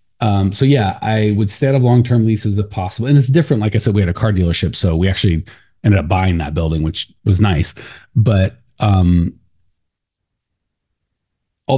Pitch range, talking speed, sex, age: 90-115 Hz, 190 wpm, male, 30-49